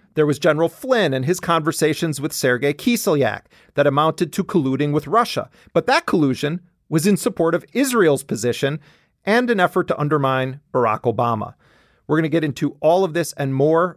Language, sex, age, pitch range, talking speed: English, male, 40-59, 130-175 Hz, 180 wpm